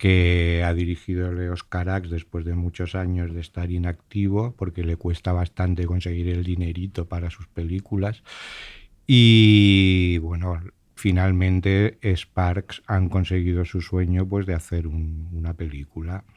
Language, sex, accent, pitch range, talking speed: Spanish, male, Spanish, 85-95 Hz, 125 wpm